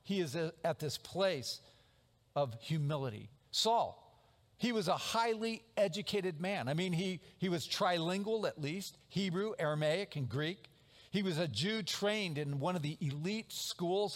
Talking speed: 155 wpm